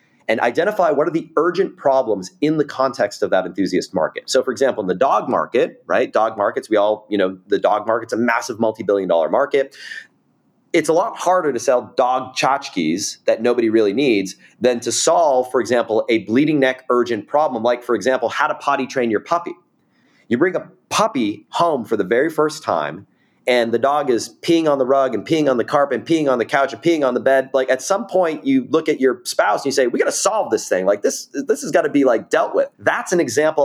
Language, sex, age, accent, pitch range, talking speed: English, male, 30-49, American, 125-165 Hz, 235 wpm